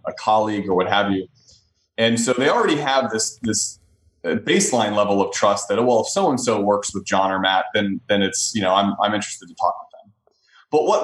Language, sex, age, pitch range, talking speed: English, male, 20-39, 110-140 Hz, 230 wpm